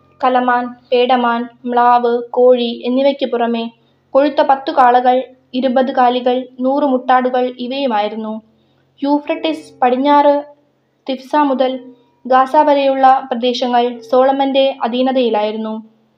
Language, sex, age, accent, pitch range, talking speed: Malayalam, female, 20-39, native, 245-280 Hz, 85 wpm